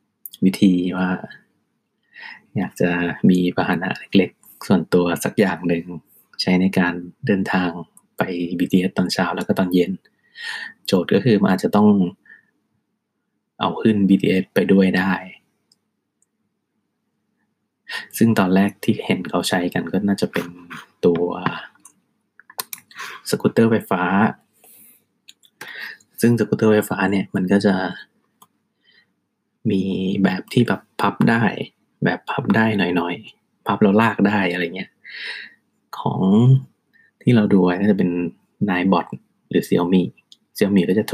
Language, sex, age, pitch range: Thai, male, 20-39, 90-105 Hz